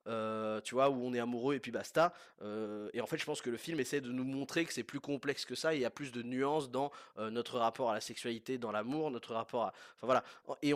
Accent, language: French, French